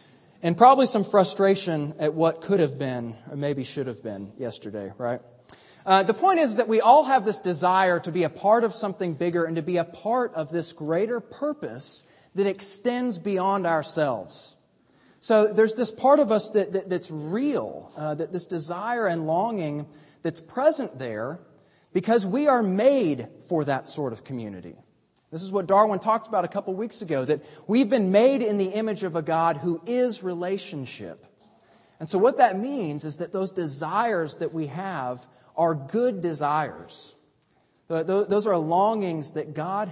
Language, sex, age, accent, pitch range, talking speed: English, male, 30-49, American, 150-210 Hz, 175 wpm